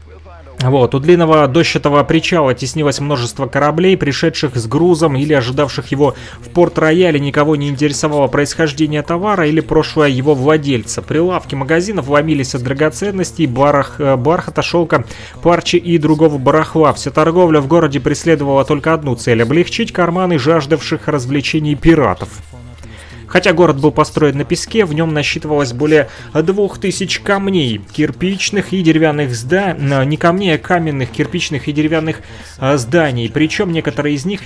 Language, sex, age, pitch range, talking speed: Russian, male, 30-49, 140-165 Hz, 135 wpm